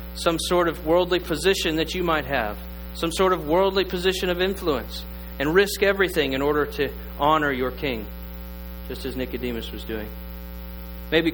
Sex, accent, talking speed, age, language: male, American, 165 wpm, 40-59, English